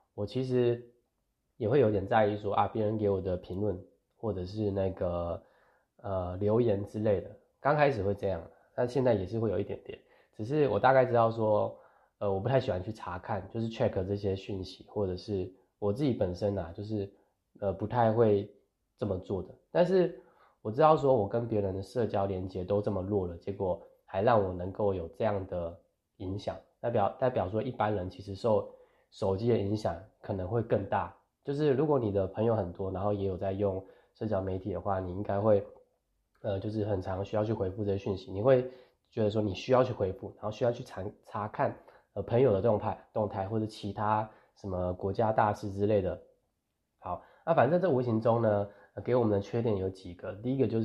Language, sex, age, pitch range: Chinese, male, 20-39, 95-115 Hz